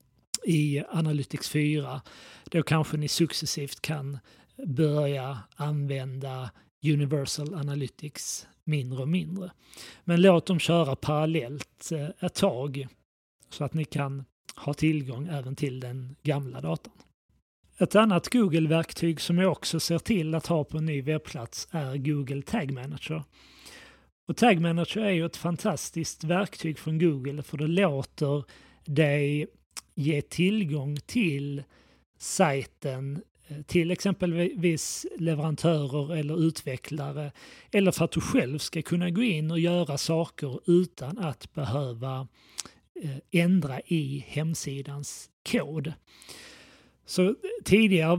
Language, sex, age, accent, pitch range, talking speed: Swedish, male, 30-49, native, 140-170 Hz, 115 wpm